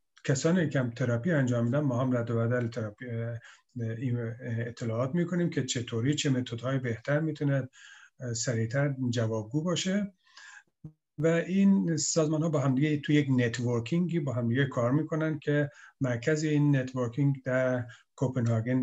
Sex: male